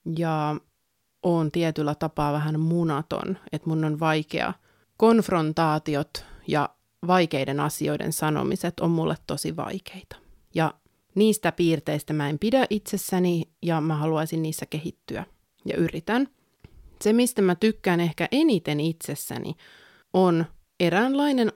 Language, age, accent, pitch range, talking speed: Finnish, 30-49, native, 155-185 Hz, 115 wpm